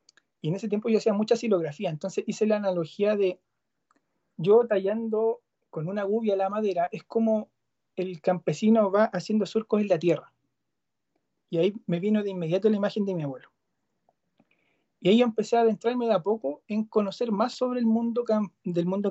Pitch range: 175-215 Hz